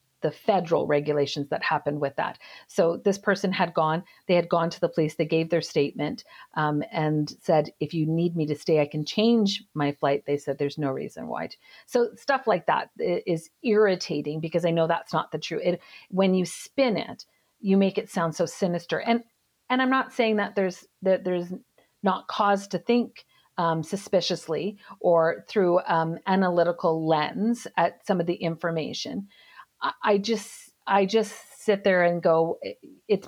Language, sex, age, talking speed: English, female, 50-69, 180 wpm